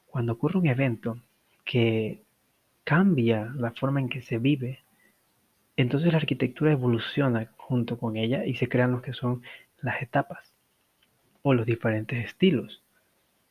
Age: 30-49